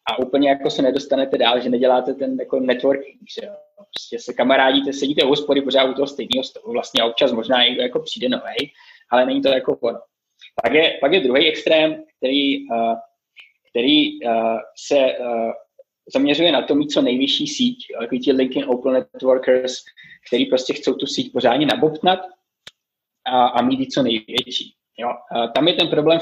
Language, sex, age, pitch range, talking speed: Czech, male, 20-39, 125-155 Hz, 170 wpm